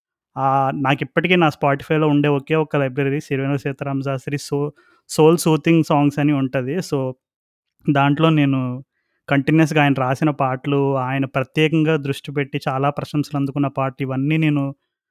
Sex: male